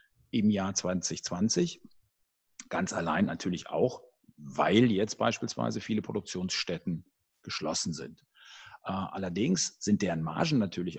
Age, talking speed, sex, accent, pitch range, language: 50-69, 105 wpm, male, German, 90-110 Hz, German